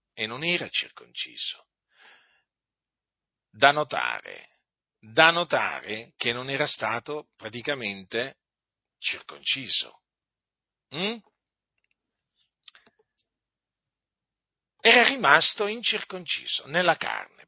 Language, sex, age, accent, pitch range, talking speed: Italian, male, 50-69, native, 115-185 Hz, 70 wpm